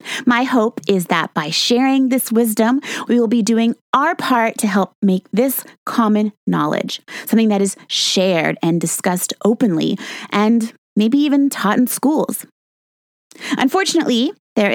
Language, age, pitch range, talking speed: English, 30-49, 185-255 Hz, 140 wpm